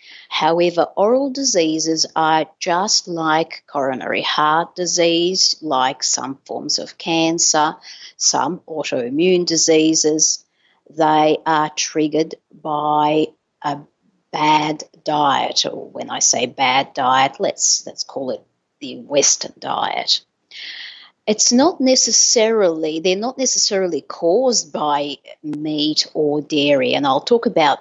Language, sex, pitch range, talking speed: English, female, 155-225 Hz, 110 wpm